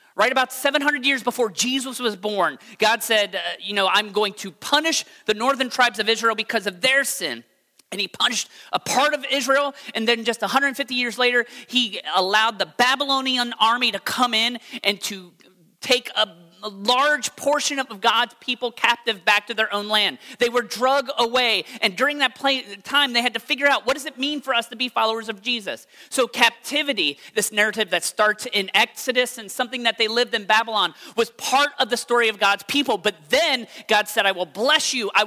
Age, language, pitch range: 30-49, English, 205-255 Hz